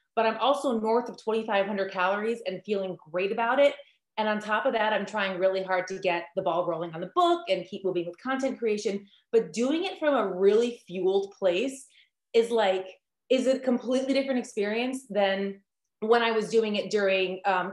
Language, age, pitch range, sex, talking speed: English, 30-49, 195-255 Hz, female, 195 wpm